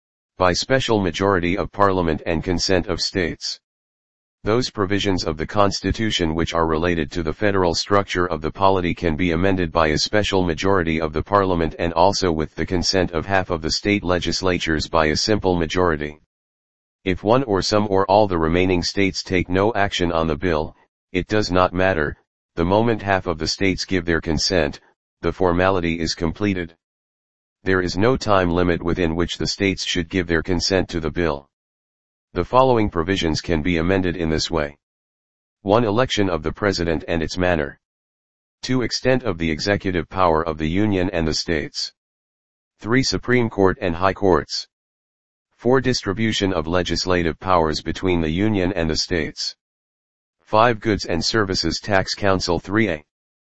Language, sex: English, male